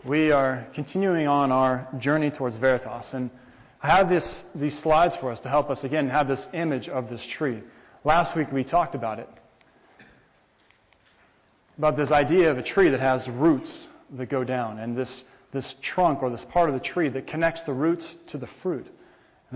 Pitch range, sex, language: 130-160 Hz, male, English